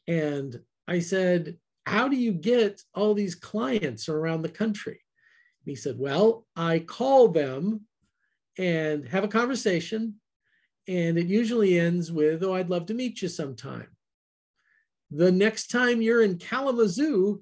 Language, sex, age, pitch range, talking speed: English, male, 50-69, 160-215 Hz, 140 wpm